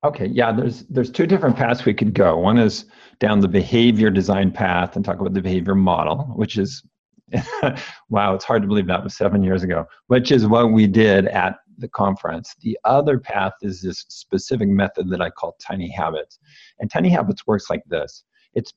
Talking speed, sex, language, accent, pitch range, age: 200 wpm, male, English, American, 100-125 Hz, 50-69